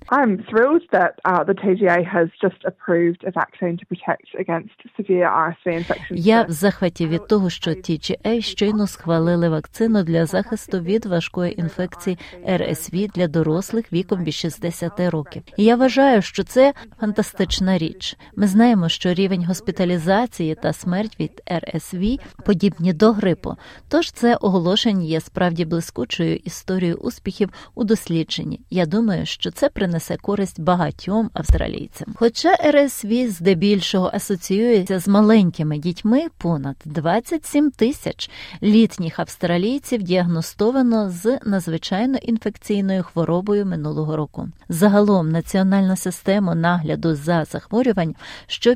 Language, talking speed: Ukrainian, 105 wpm